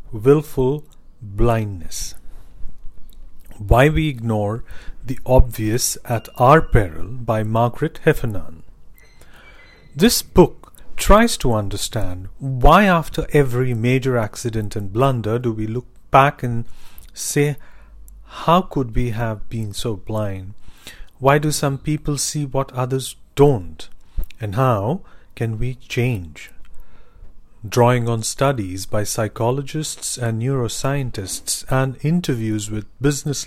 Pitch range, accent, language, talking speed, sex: 105-135 Hz, Indian, English, 110 wpm, male